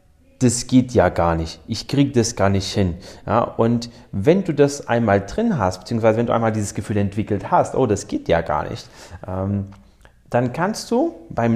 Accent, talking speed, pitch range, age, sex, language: German, 190 wpm, 100-150 Hz, 30-49, male, German